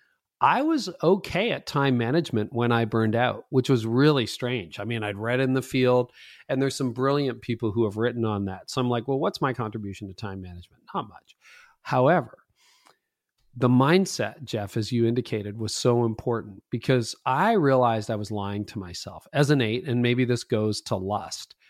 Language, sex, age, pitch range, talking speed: English, male, 40-59, 110-130 Hz, 195 wpm